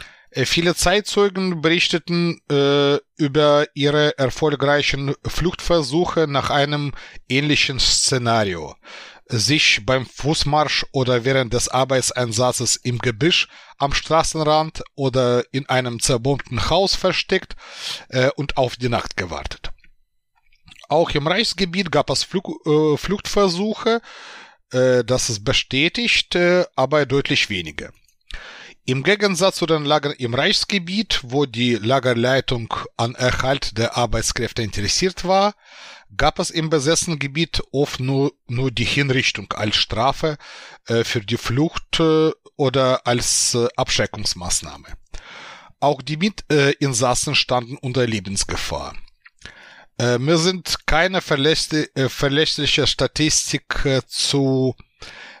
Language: German